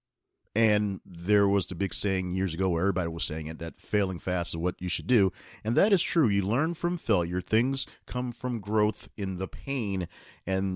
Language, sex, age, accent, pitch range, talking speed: English, male, 40-59, American, 90-115 Hz, 205 wpm